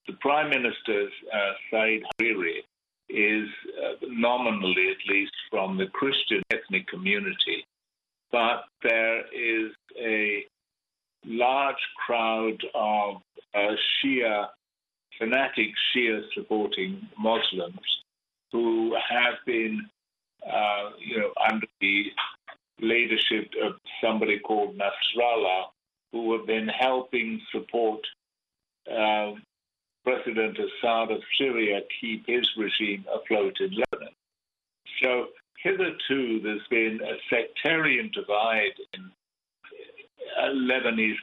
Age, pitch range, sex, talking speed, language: 50-69, 105-135 Hz, male, 95 wpm, English